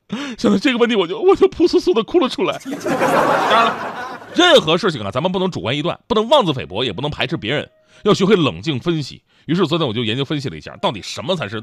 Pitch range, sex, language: 120-185 Hz, male, Chinese